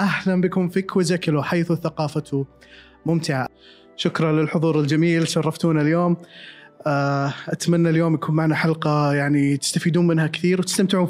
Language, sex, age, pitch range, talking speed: Arabic, male, 20-39, 145-175 Hz, 120 wpm